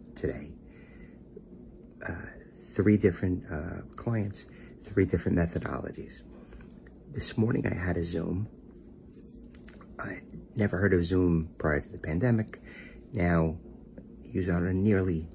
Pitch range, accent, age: 80-95 Hz, American, 50-69